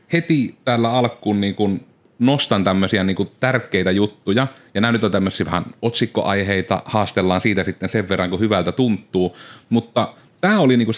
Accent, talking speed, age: native, 155 wpm, 30-49